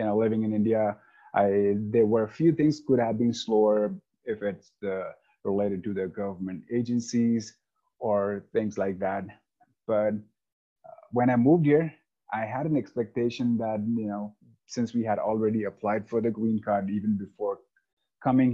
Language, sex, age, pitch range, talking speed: English, male, 30-49, 105-120 Hz, 165 wpm